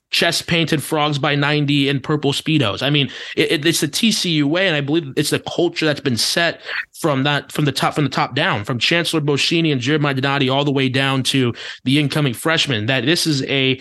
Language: English